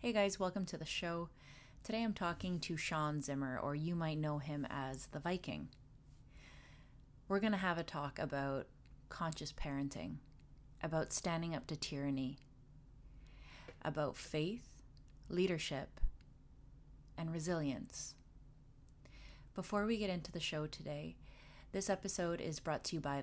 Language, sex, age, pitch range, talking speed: English, female, 30-49, 145-180 Hz, 135 wpm